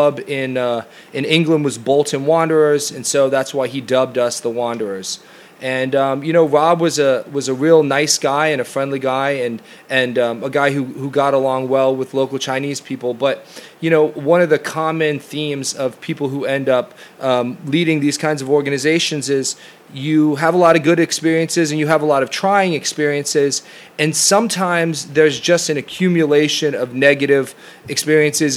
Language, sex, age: English, male, 30-49